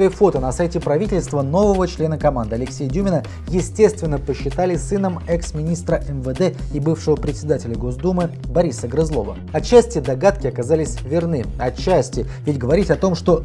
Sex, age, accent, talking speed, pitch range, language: male, 20-39, native, 135 wpm, 130-170 Hz, Russian